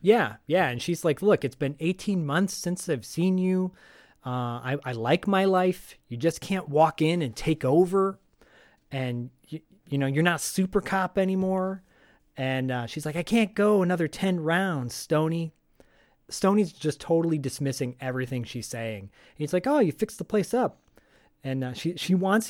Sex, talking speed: male, 180 wpm